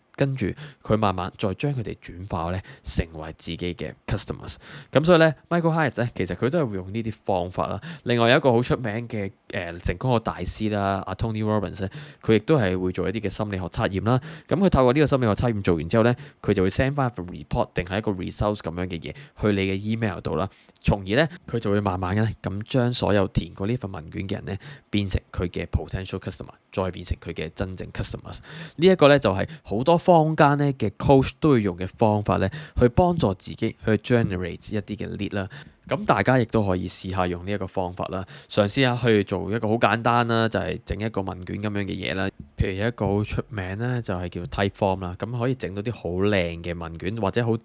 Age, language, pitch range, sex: 20-39, Chinese, 95-125 Hz, male